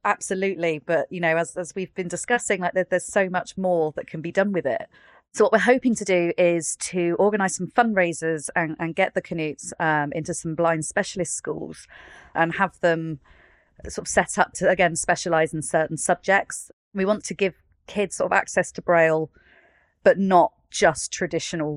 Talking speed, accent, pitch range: 190 wpm, British, 160-185 Hz